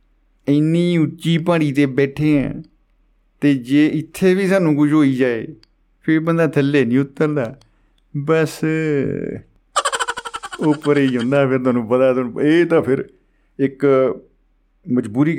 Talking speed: 135 wpm